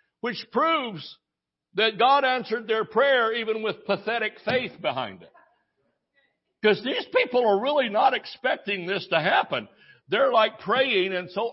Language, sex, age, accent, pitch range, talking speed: English, male, 60-79, American, 125-195 Hz, 145 wpm